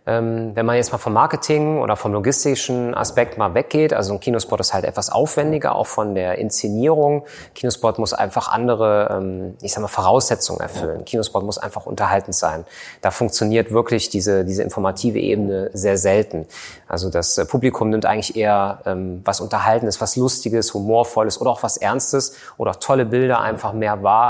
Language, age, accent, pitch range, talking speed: German, 30-49, German, 105-130 Hz, 165 wpm